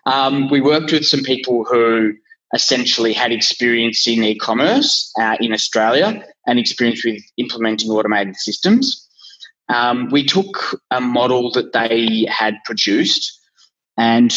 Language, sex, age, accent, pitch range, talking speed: English, male, 20-39, Australian, 110-135 Hz, 135 wpm